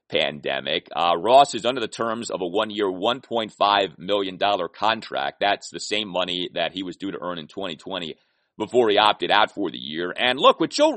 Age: 30-49